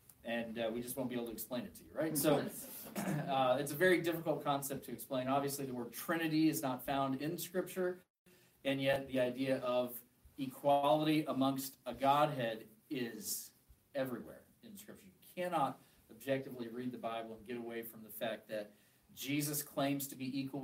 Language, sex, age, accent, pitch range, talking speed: English, male, 40-59, American, 120-145 Hz, 180 wpm